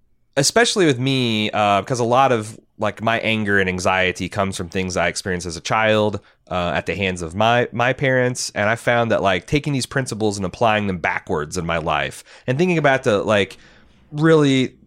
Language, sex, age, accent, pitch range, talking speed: English, male, 30-49, American, 100-125 Hz, 200 wpm